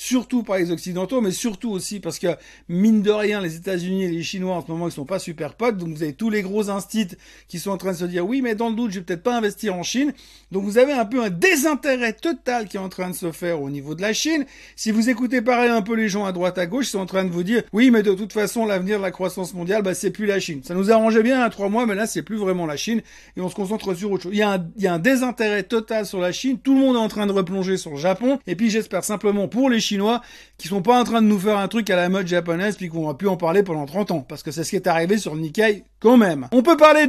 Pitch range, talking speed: 180-230 Hz, 315 wpm